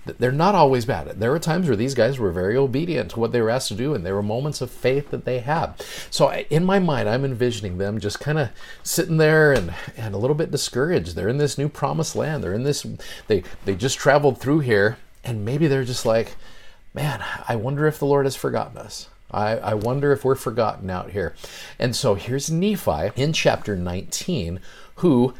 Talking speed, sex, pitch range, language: 220 wpm, male, 100-135 Hz, English